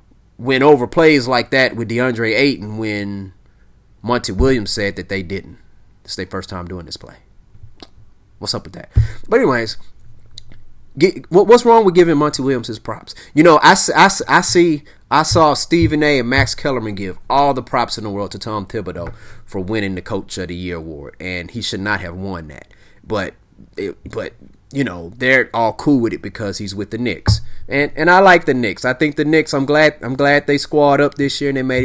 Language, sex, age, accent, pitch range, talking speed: English, male, 30-49, American, 100-145 Hz, 205 wpm